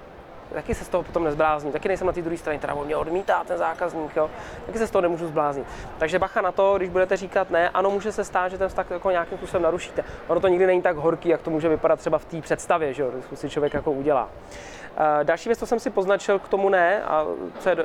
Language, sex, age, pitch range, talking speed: Czech, male, 20-39, 160-190 Hz, 260 wpm